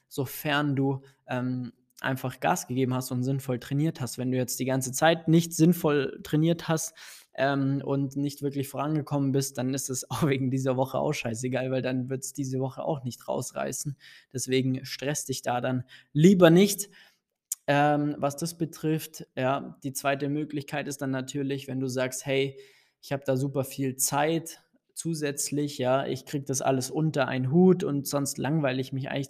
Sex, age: male, 20-39